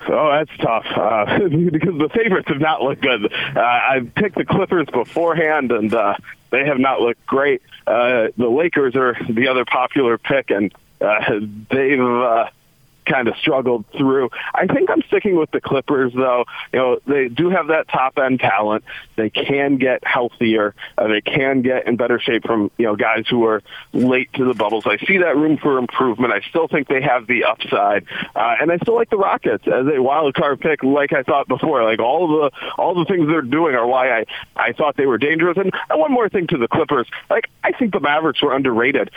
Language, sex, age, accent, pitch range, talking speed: English, male, 40-59, American, 120-150 Hz, 210 wpm